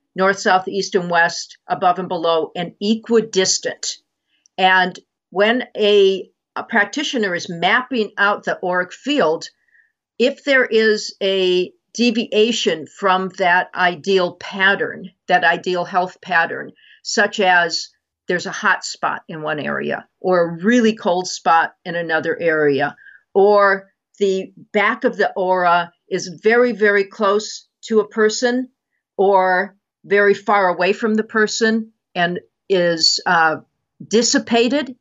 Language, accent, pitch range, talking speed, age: English, American, 180-220 Hz, 130 wpm, 50-69